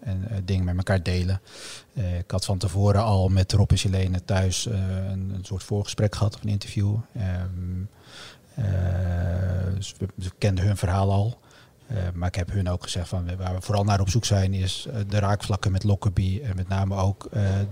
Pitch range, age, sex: 95-110 Hz, 40-59, male